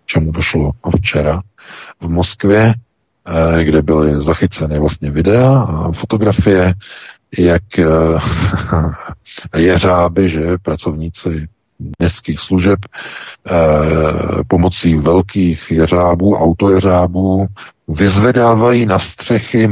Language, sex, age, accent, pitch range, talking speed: Czech, male, 50-69, native, 85-100 Hz, 75 wpm